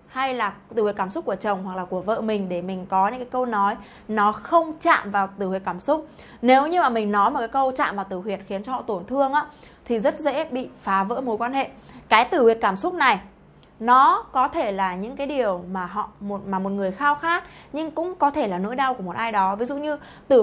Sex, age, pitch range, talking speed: female, 20-39, 200-275 Hz, 265 wpm